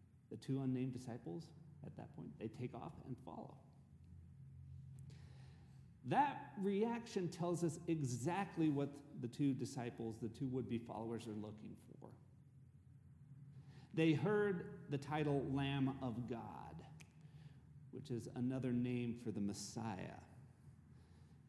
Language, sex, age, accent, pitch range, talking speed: English, male, 40-59, American, 125-160 Hz, 115 wpm